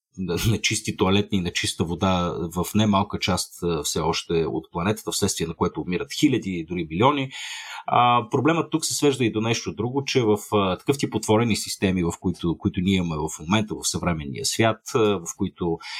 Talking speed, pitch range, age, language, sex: 180 wpm, 95-125 Hz, 40-59, Bulgarian, male